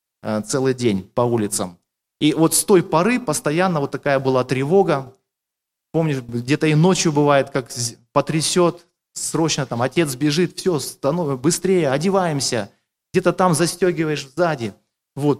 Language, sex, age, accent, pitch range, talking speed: Russian, male, 30-49, native, 140-185 Hz, 135 wpm